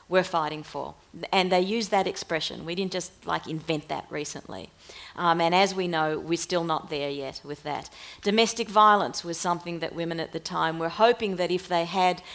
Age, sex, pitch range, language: 40-59, female, 160-185 Hz, English